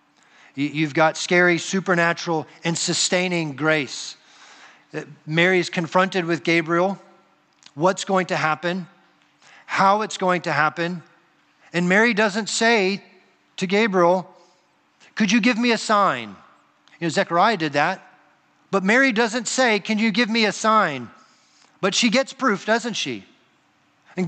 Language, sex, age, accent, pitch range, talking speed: English, male, 40-59, American, 185-245 Hz, 135 wpm